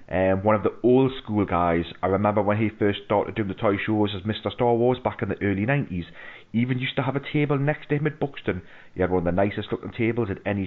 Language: English